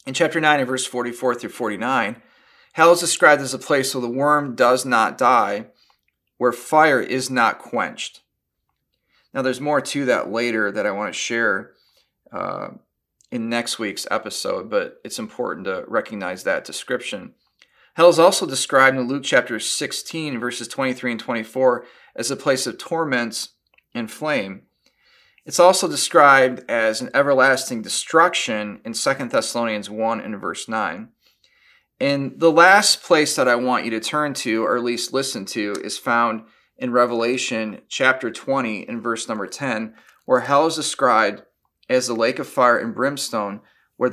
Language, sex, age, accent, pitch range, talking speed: English, male, 40-59, American, 115-140 Hz, 160 wpm